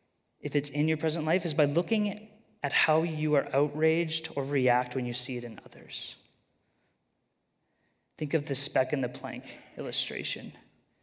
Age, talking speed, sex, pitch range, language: 30-49, 165 wpm, male, 130-160 Hz, English